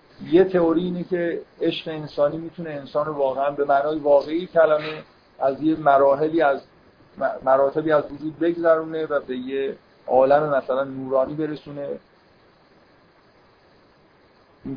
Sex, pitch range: male, 135-160 Hz